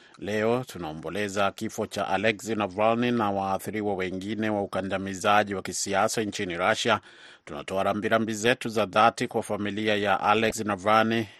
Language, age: Swahili, 30-49